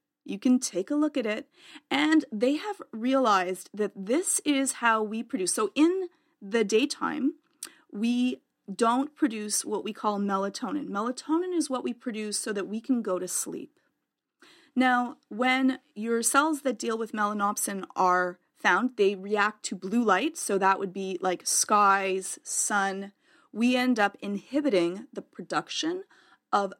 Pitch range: 195-270 Hz